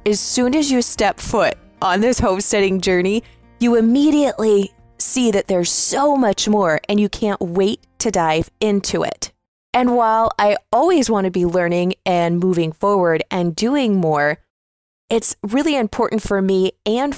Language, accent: English, American